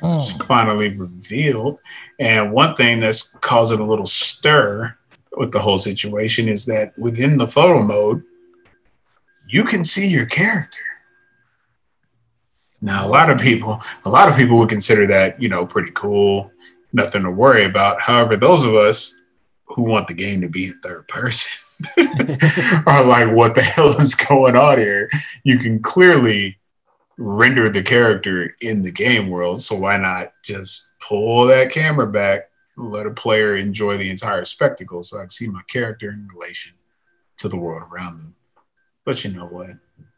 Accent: American